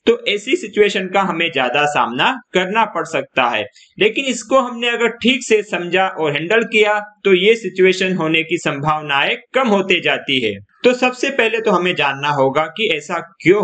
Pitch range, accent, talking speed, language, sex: 155-220 Hz, native, 180 wpm, Hindi, male